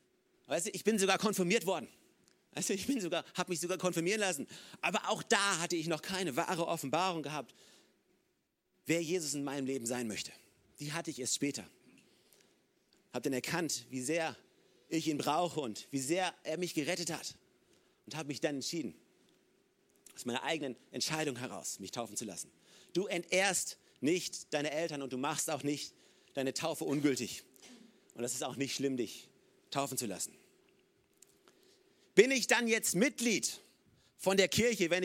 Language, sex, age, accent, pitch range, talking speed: German, male, 40-59, German, 150-195 Hz, 170 wpm